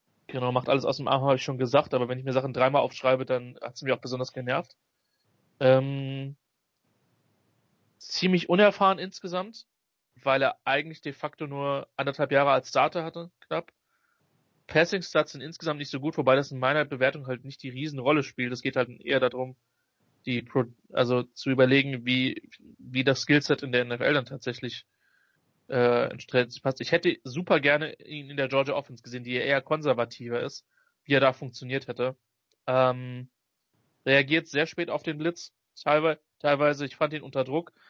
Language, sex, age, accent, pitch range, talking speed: English, male, 30-49, German, 130-155 Hz, 170 wpm